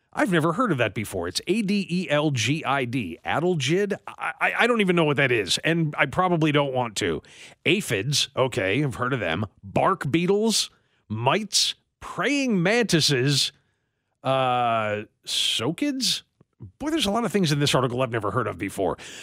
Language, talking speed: English, 160 wpm